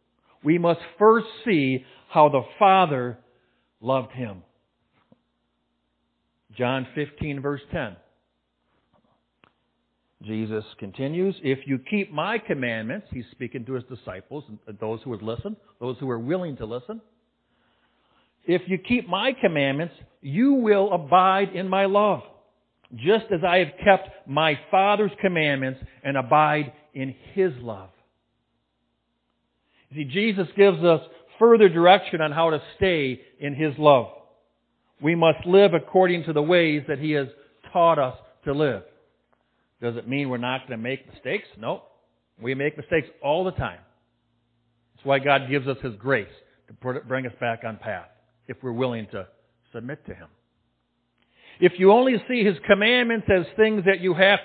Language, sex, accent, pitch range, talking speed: English, male, American, 120-185 Hz, 150 wpm